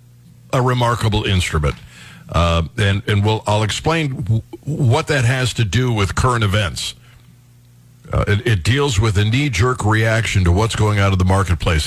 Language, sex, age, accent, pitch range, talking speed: English, male, 50-69, American, 105-125 Hz, 160 wpm